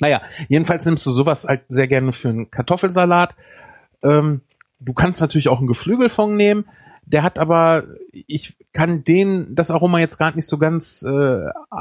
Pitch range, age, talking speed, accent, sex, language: 125-165 Hz, 30-49, 170 wpm, German, male, German